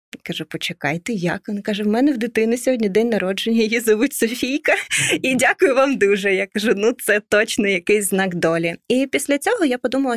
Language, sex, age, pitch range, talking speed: Ukrainian, female, 20-39, 185-235 Hz, 195 wpm